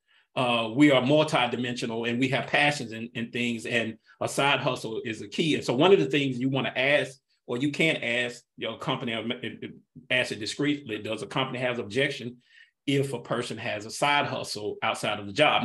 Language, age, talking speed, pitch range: English, 40-59, 200 wpm, 120-145 Hz